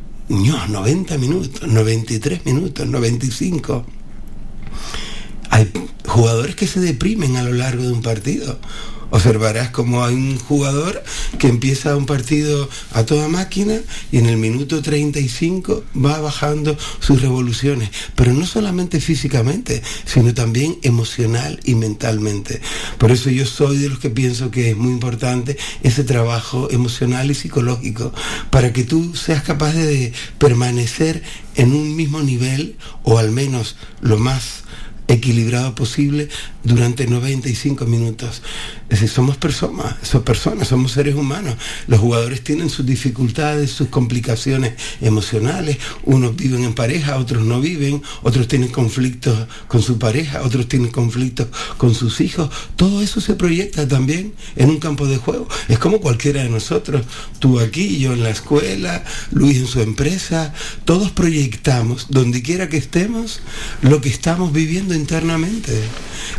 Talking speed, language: 140 wpm, Spanish